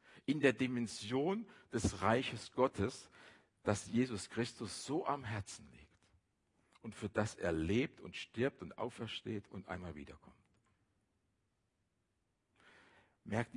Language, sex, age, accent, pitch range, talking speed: German, male, 60-79, German, 95-115 Hz, 115 wpm